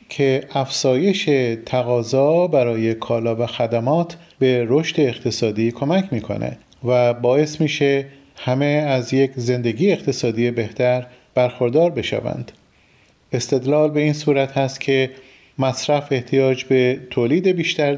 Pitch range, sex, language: 125-155 Hz, male, Persian